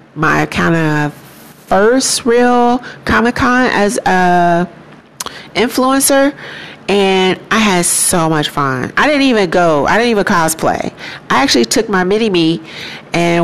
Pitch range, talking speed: 160-210 Hz, 130 wpm